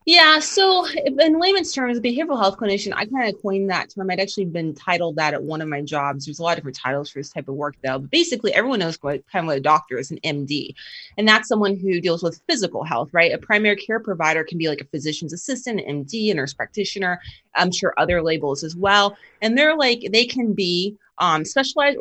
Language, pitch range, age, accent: English, 160-215 Hz, 30-49, American